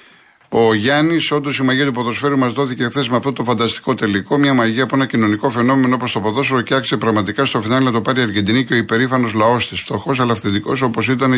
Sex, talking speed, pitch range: male, 230 wpm, 115-140 Hz